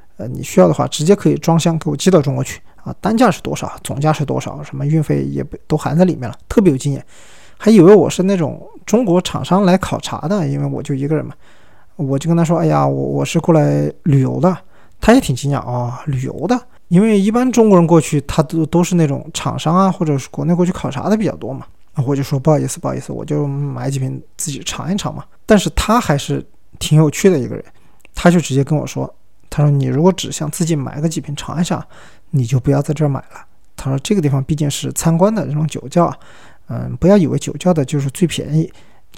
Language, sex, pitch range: Chinese, male, 140-175 Hz